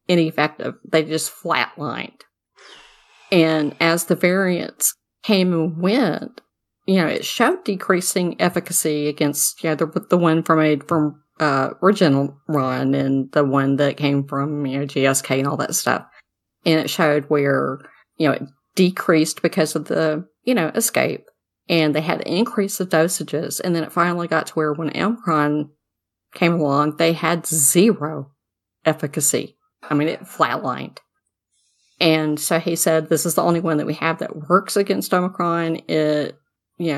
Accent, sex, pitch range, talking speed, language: American, female, 145-180 Hz, 160 wpm, English